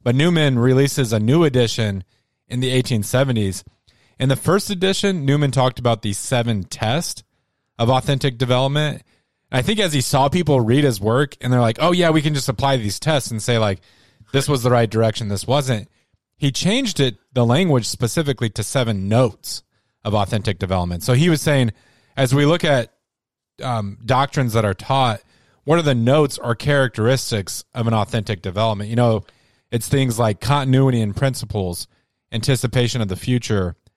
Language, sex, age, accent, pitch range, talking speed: English, male, 30-49, American, 110-135 Hz, 175 wpm